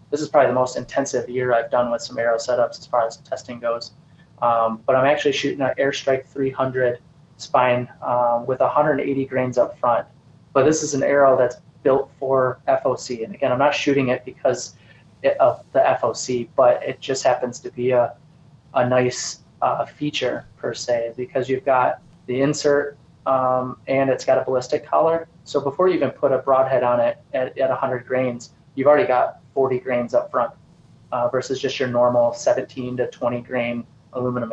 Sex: male